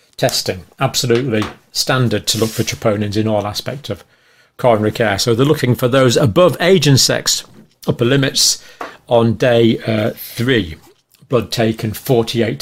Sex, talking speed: male, 150 wpm